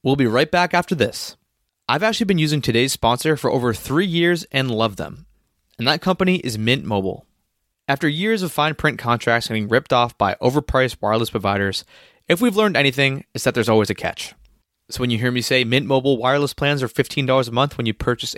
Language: English